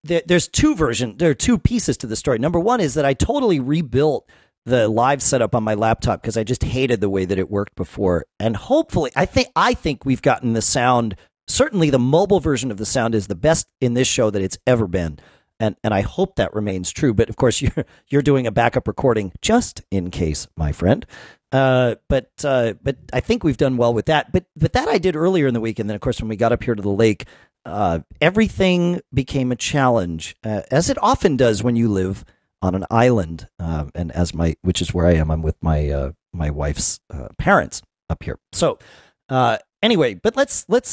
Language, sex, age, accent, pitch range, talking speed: English, male, 40-59, American, 100-145 Hz, 225 wpm